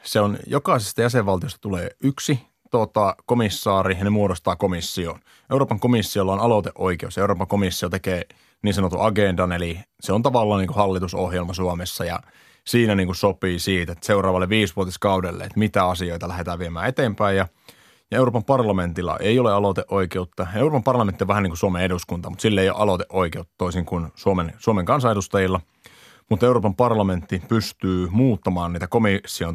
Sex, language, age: male, Finnish, 30-49